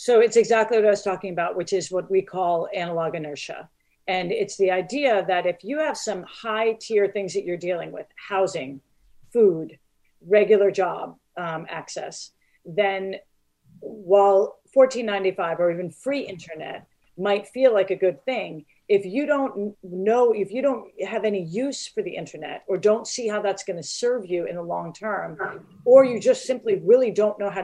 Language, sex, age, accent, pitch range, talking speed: English, female, 40-59, American, 185-220 Hz, 185 wpm